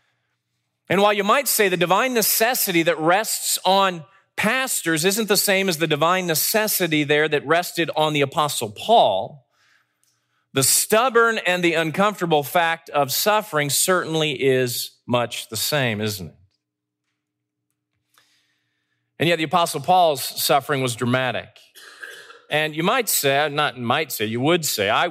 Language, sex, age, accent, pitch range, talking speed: English, male, 40-59, American, 145-200 Hz, 145 wpm